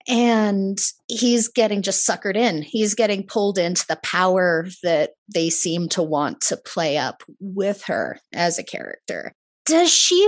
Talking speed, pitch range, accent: 160 wpm, 165-215 Hz, American